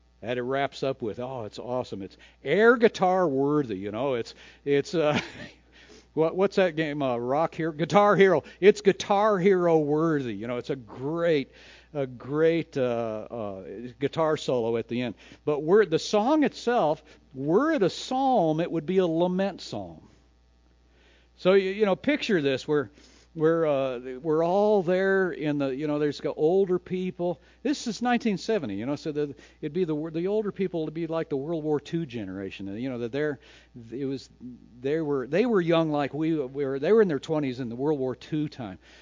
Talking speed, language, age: 195 wpm, English, 60-79